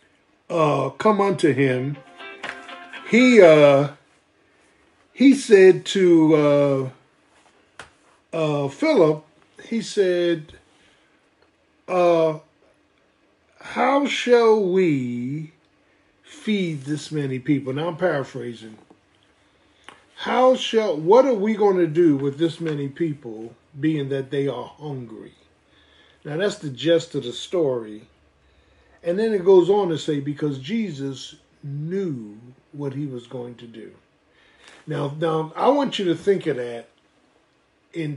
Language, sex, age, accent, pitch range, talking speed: English, male, 50-69, American, 135-190 Hz, 120 wpm